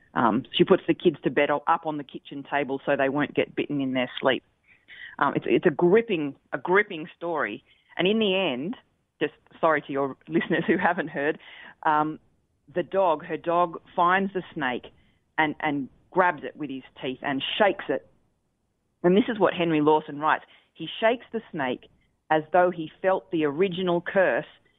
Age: 30-49